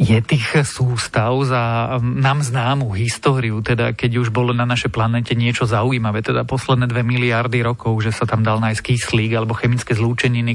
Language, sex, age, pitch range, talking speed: Slovak, male, 40-59, 115-130 Hz, 170 wpm